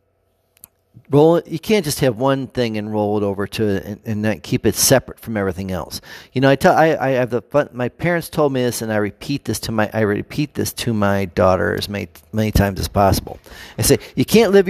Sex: male